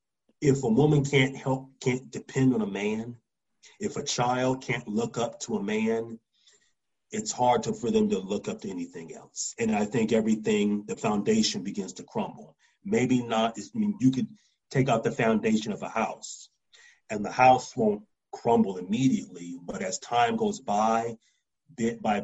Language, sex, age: English, male, 40-59